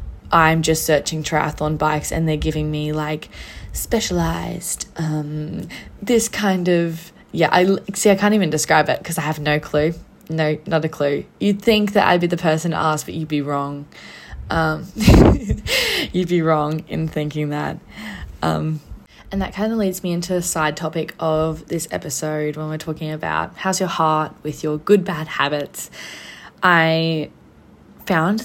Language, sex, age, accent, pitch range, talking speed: English, female, 10-29, Australian, 150-175 Hz, 165 wpm